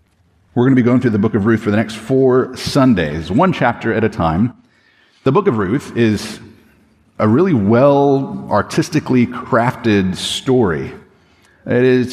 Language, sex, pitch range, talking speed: English, male, 100-130 Hz, 160 wpm